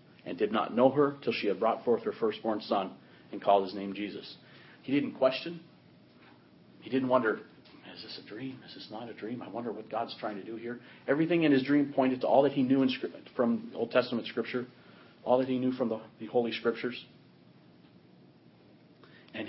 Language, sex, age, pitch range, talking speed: English, male, 40-59, 110-145 Hz, 195 wpm